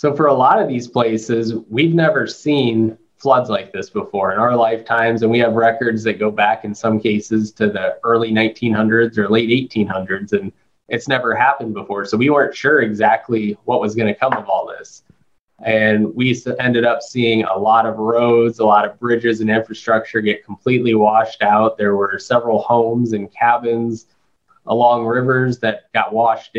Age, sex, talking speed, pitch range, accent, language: 20-39, male, 185 wpm, 105-115 Hz, American, English